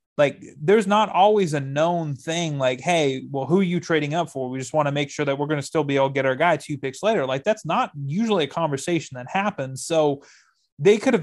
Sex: male